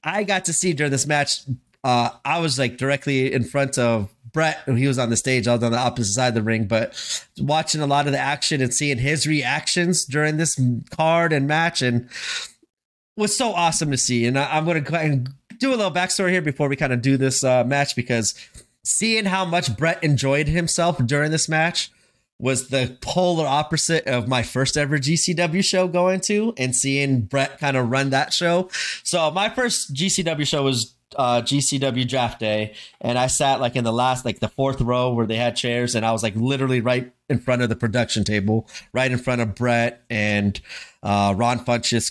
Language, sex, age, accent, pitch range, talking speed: English, male, 30-49, American, 120-155 Hz, 215 wpm